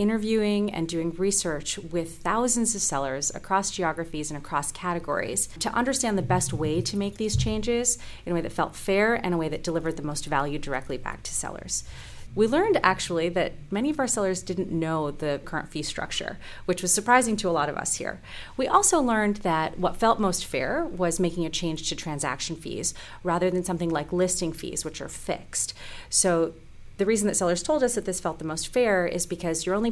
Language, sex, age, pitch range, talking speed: English, female, 30-49, 160-200 Hz, 210 wpm